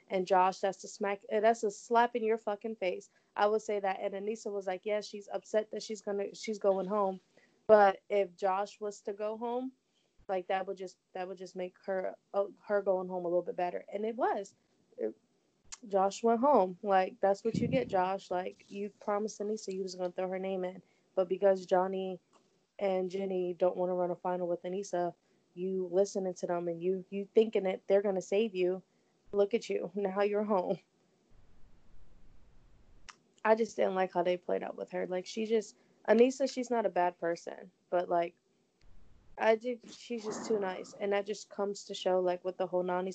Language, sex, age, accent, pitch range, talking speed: English, female, 20-39, American, 180-205 Hz, 205 wpm